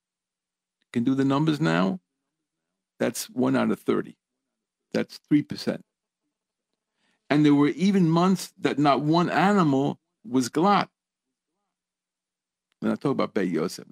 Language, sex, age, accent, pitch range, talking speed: English, male, 50-69, American, 125-165 Hz, 130 wpm